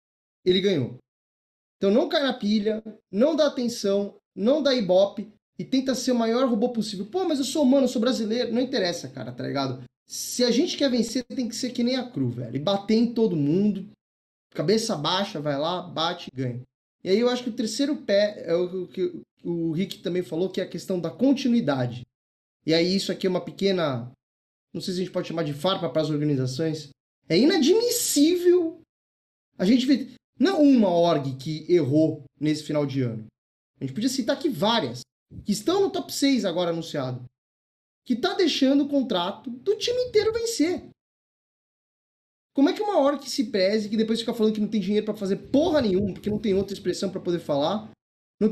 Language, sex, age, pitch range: Portuguese, male, 20-39, 165-255 Hz